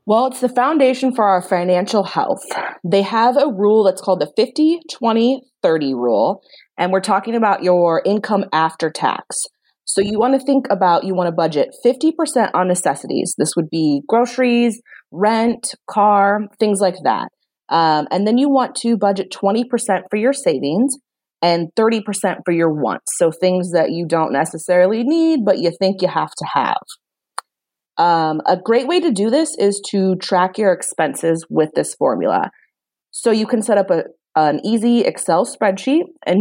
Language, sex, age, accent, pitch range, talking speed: English, female, 20-39, American, 175-235 Hz, 170 wpm